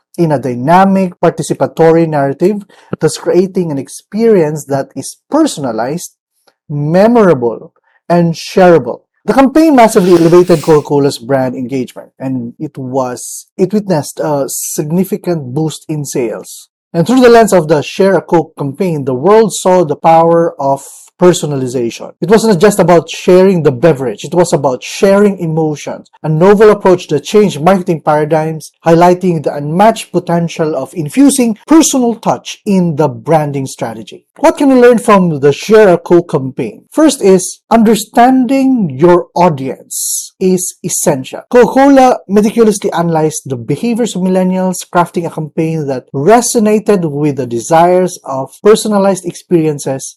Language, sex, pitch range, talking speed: English, male, 150-210 Hz, 140 wpm